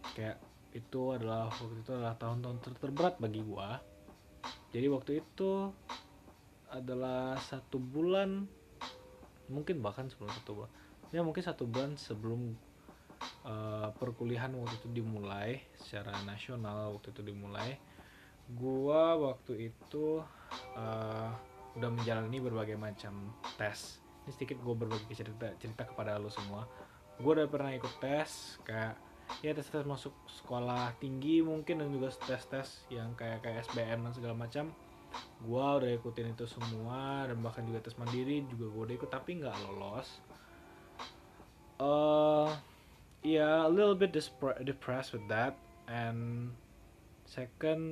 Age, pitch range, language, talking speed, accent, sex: 20-39, 110-135 Hz, Indonesian, 135 wpm, native, male